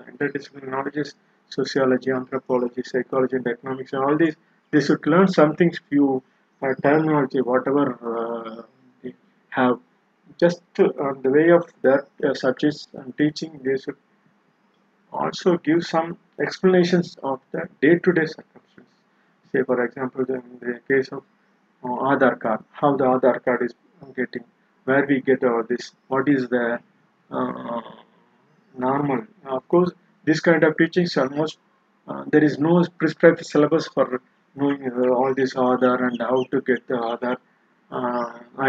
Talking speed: 150 wpm